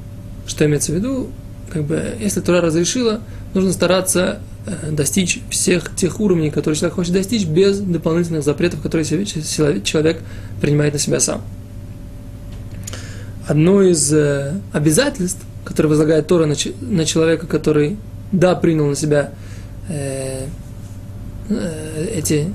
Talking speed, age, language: 110 wpm, 20-39, Russian